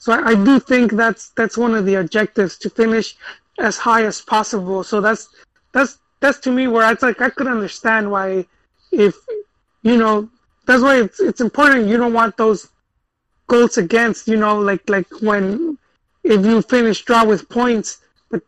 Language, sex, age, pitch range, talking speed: English, male, 30-49, 195-230 Hz, 180 wpm